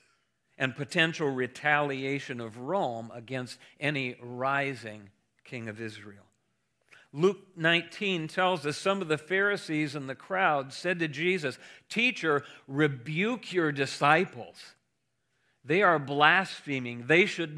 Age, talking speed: 50-69, 115 wpm